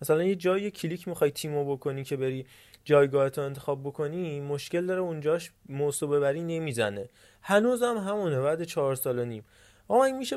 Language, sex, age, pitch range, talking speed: Persian, male, 20-39, 135-175 Hz, 155 wpm